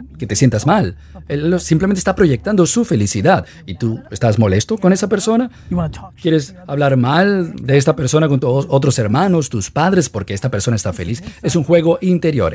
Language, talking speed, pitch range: Spanish, 180 wpm, 115-170 Hz